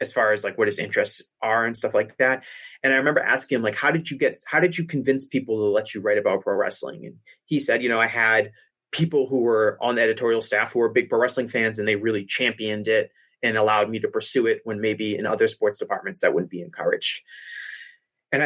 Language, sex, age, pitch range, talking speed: English, male, 30-49, 110-155 Hz, 245 wpm